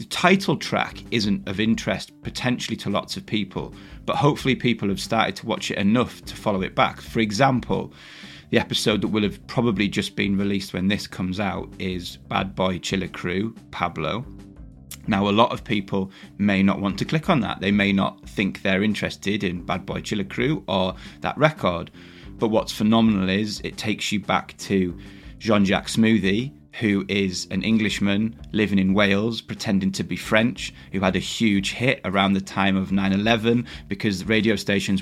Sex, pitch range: male, 95-115 Hz